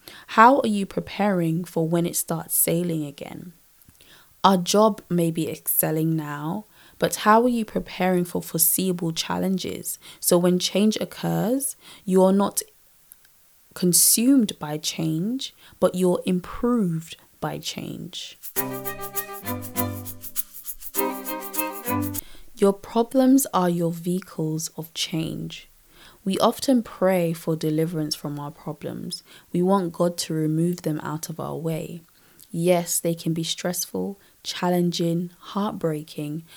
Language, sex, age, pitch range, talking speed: English, female, 20-39, 160-190 Hz, 115 wpm